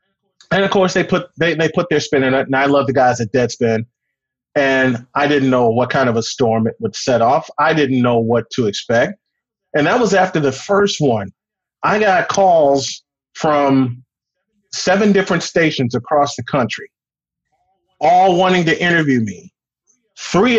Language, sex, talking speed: English, male, 180 wpm